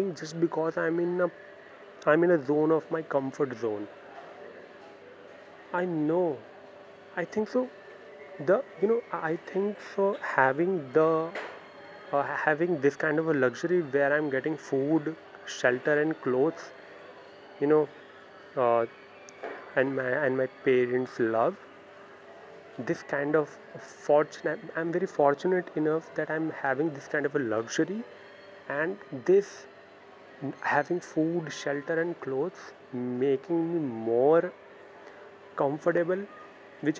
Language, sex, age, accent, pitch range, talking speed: English, male, 30-49, Indian, 135-170 Hz, 125 wpm